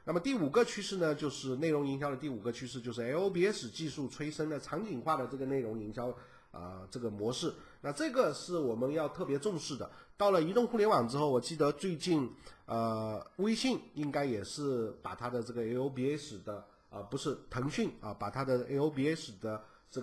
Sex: male